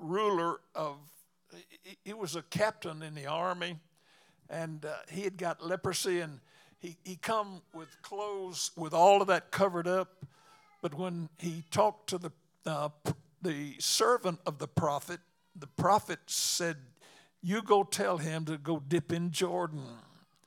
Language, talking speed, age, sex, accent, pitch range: English, 150 wpm, 60-79, male, American, 160-190 Hz